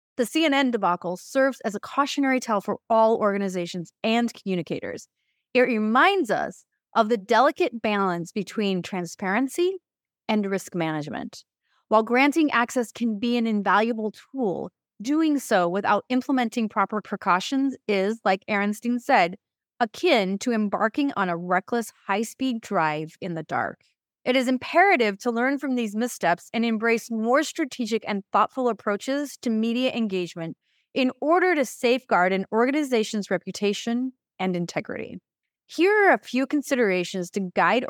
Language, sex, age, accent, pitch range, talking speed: English, female, 30-49, American, 195-260 Hz, 140 wpm